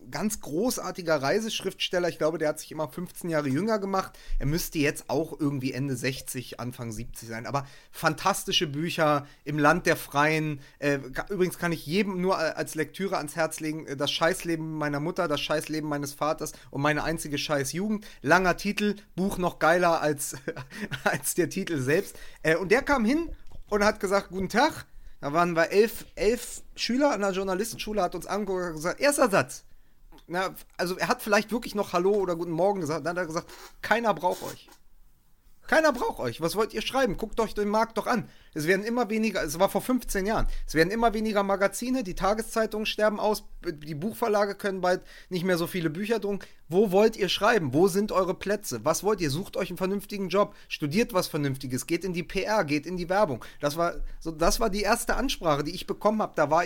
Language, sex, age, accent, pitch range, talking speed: German, male, 30-49, German, 155-205 Hz, 205 wpm